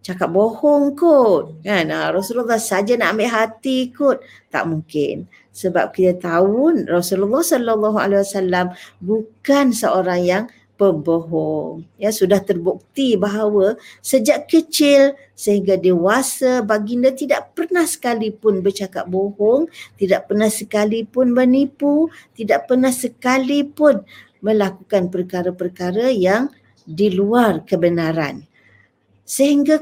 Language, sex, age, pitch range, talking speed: Malay, female, 50-69, 190-265 Hz, 105 wpm